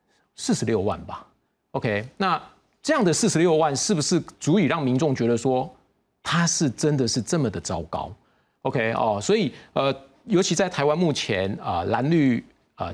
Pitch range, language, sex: 110-160 Hz, Chinese, male